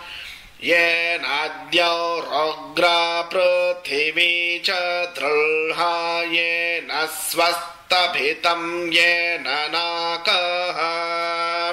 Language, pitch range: Hindi, 170-175 Hz